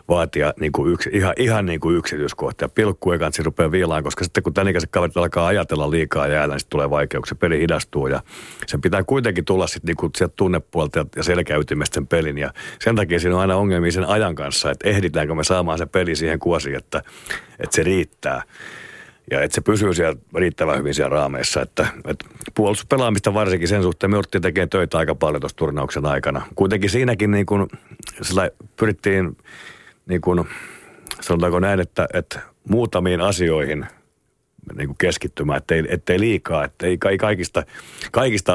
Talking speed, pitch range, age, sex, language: 160 wpm, 80-100 Hz, 50-69, male, Finnish